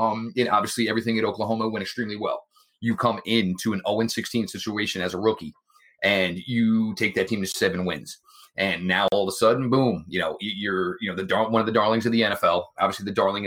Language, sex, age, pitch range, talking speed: English, male, 30-49, 100-125 Hz, 225 wpm